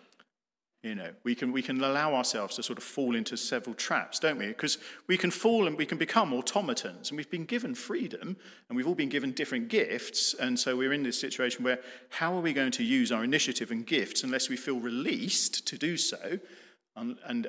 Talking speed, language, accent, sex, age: 220 wpm, English, British, male, 40-59